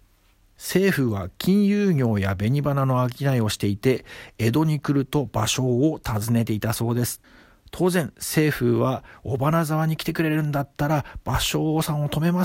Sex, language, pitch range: male, Japanese, 105-150 Hz